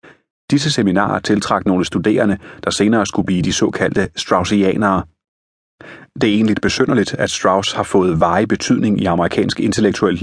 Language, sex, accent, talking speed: Danish, male, native, 145 wpm